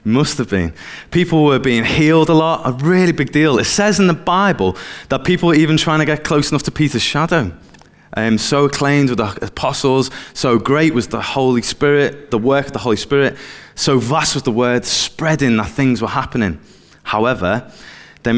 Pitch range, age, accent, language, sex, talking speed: 110-140 Hz, 20-39, British, English, male, 195 wpm